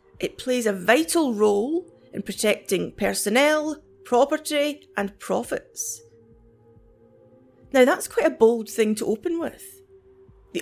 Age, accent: 30-49, British